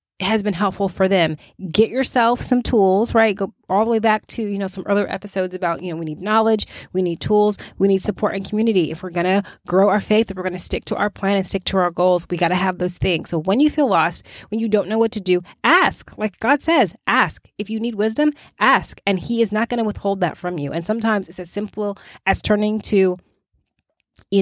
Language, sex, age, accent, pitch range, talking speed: English, female, 20-39, American, 180-215 Hz, 250 wpm